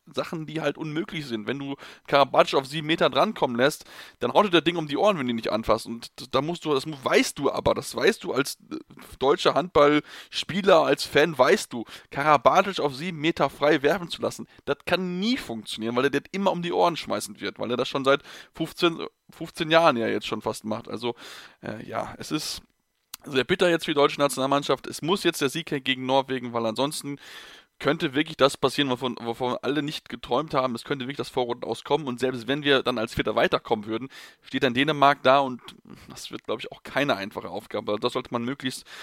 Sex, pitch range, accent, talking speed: male, 130-170 Hz, German, 215 wpm